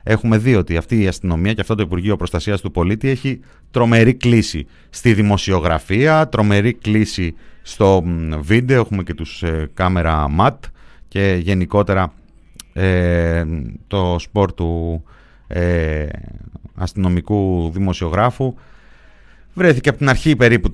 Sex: male